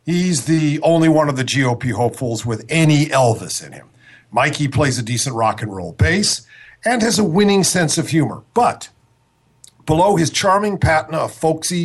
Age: 50-69